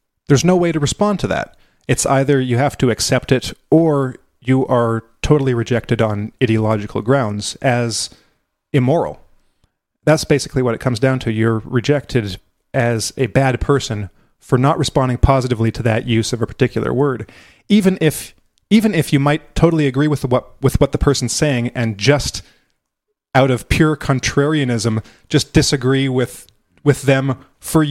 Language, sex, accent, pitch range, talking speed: English, male, American, 115-140 Hz, 160 wpm